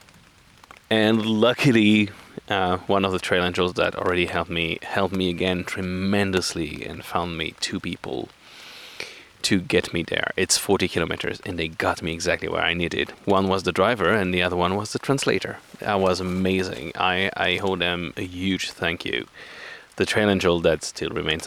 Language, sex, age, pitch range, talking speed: English, male, 20-39, 85-105 Hz, 180 wpm